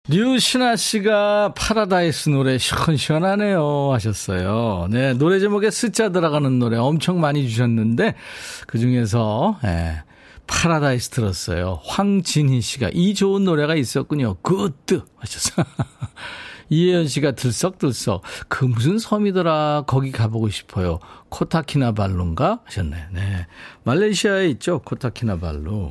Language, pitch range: Korean, 110-170 Hz